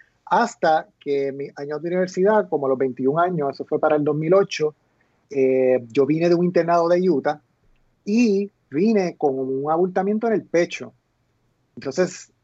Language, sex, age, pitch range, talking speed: Spanish, male, 30-49, 135-170 Hz, 160 wpm